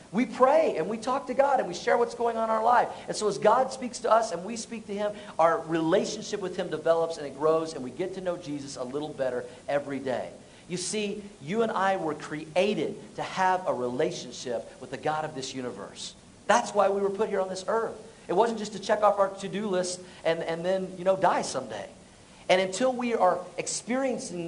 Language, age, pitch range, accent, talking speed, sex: English, 50-69, 160-200 Hz, American, 230 wpm, male